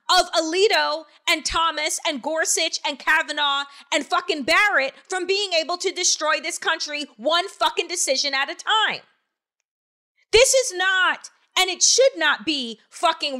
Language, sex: English, female